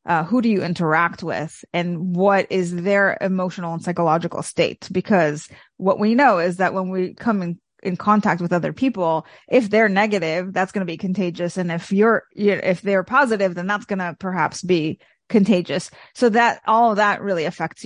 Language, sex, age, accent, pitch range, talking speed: English, female, 30-49, American, 180-225 Hz, 200 wpm